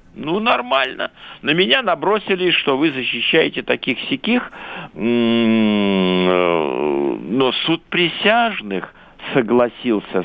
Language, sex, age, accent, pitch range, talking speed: Russian, male, 60-79, native, 125-190 Hz, 75 wpm